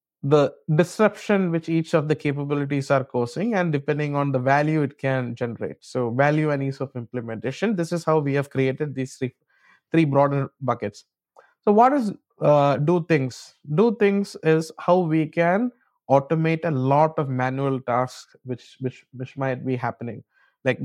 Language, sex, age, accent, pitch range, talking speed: English, male, 20-39, Indian, 125-160 Hz, 170 wpm